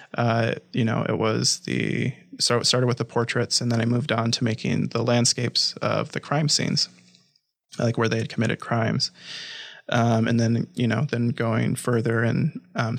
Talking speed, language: 190 wpm, English